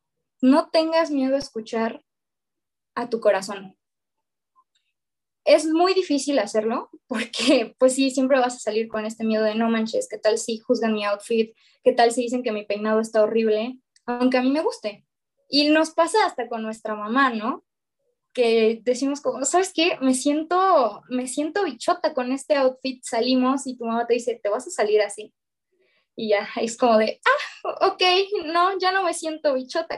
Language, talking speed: Spanish, 180 wpm